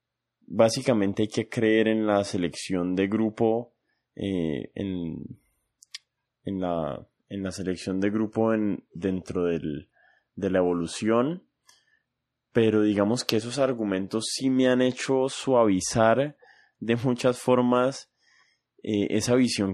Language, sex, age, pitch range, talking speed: Spanish, male, 20-39, 95-115 Hz, 110 wpm